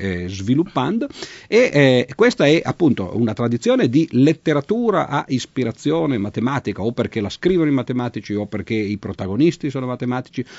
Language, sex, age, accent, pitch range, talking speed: Italian, male, 50-69, native, 95-135 Hz, 145 wpm